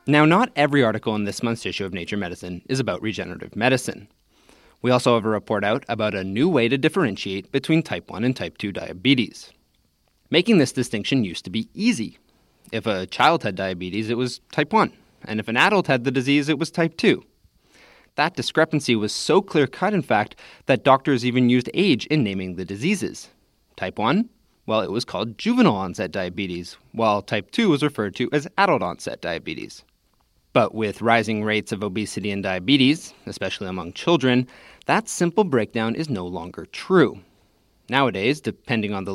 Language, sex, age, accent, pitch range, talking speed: English, male, 30-49, American, 100-135 Hz, 180 wpm